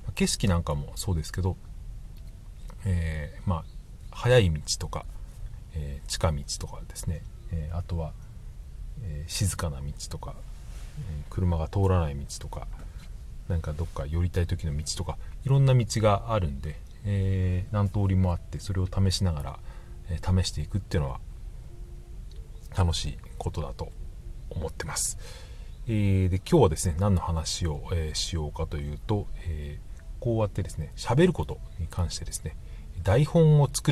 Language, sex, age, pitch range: Japanese, male, 40-59, 80-105 Hz